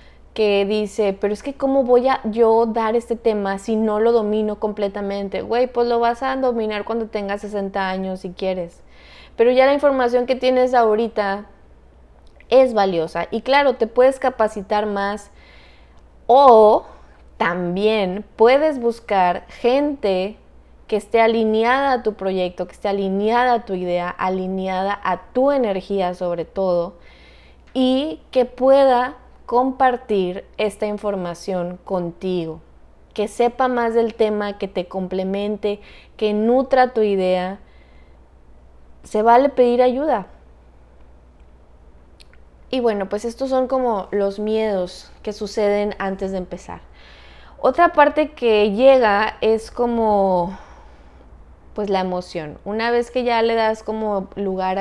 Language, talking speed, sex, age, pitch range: Spanish, 130 wpm, female, 20-39, 180-235 Hz